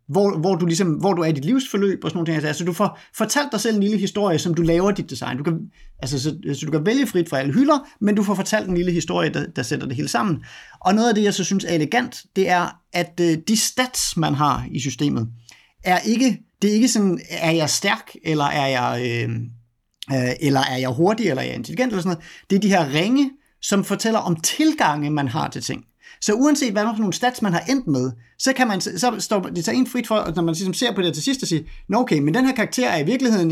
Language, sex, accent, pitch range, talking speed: Danish, male, native, 155-215 Hz, 270 wpm